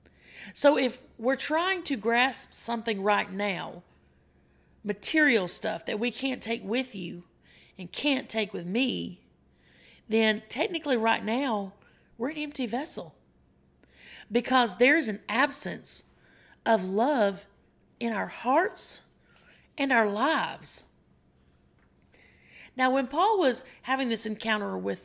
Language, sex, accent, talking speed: English, female, American, 120 wpm